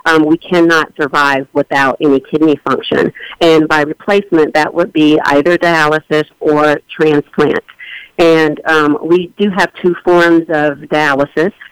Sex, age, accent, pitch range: female, 50-69, American, 145-170 Hz